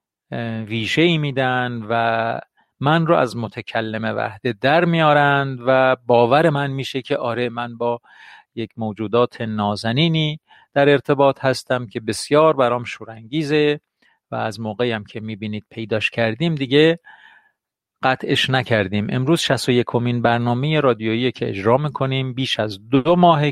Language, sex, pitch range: Persian, male, 115-150 Hz